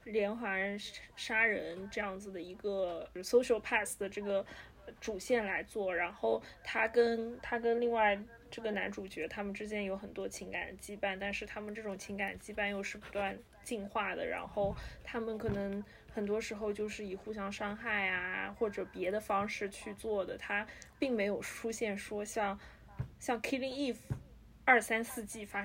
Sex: female